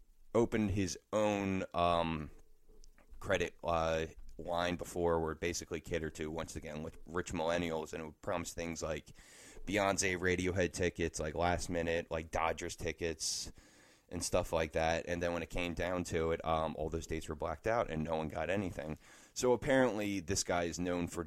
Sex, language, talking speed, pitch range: male, English, 180 wpm, 85-95 Hz